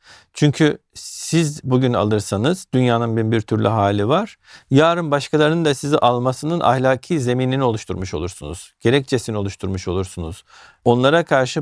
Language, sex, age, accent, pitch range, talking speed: Turkish, male, 50-69, native, 115-150 Hz, 120 wpm